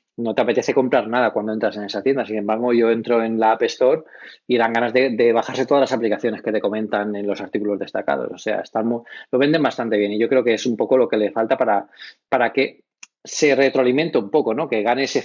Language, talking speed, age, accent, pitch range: Spanish, 250 wpm, 20-39, Spanish, 110-140 Hz